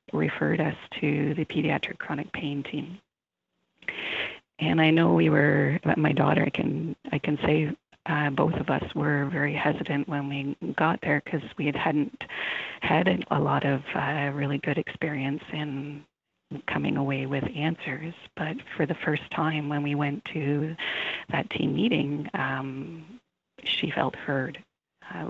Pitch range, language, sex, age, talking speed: 135-150 Hz, English, female, 40-59, 155 wpm